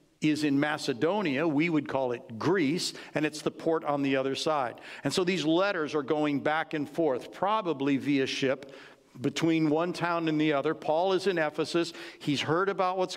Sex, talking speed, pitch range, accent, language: male, 190 wpm, 140-170 Hz, American, English